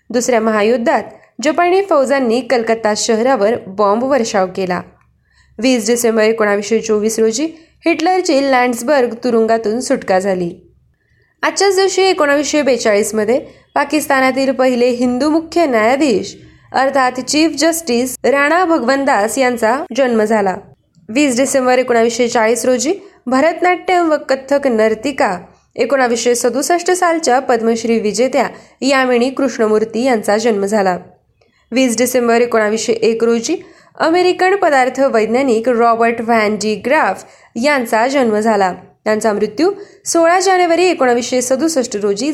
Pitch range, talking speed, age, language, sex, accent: 225-290 Hz, 100 wpm, 20-39, Marathi, female, native